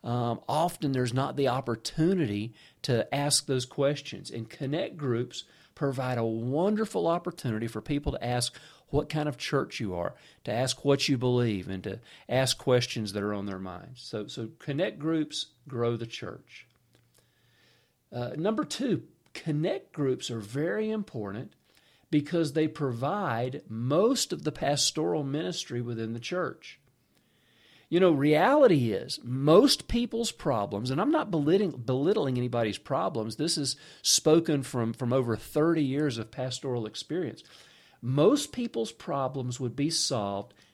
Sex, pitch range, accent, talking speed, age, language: male, 115-150 Hz, American, 145 wpm, 50-69, English